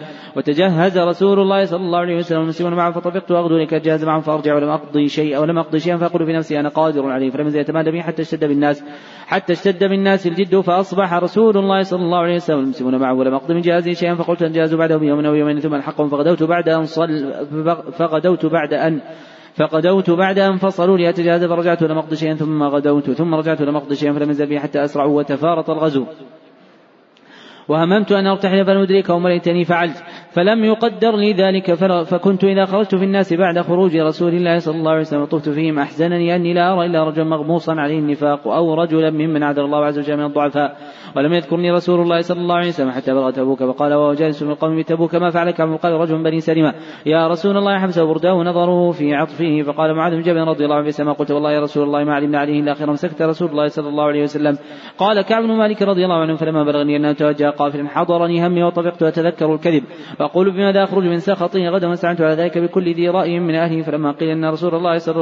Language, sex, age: Arabic, male, 30-49